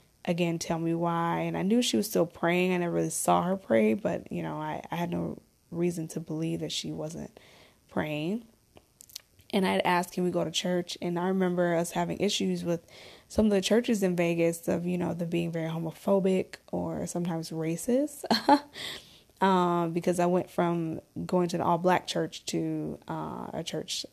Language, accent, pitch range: English, American, 160-180 Hz